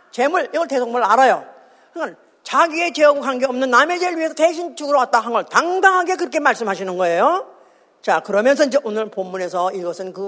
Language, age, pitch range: Korean, 50-69, 225-345 Hz